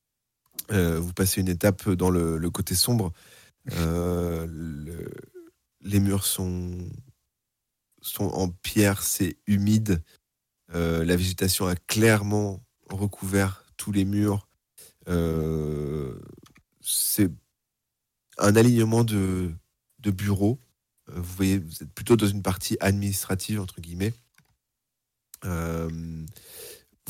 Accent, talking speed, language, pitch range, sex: French, 105 wpm, French, 85-105 Hz, male